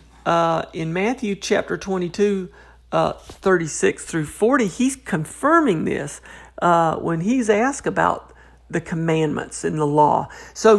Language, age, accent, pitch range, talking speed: English, 50-69, American, 165-220 Hz, 130 wpm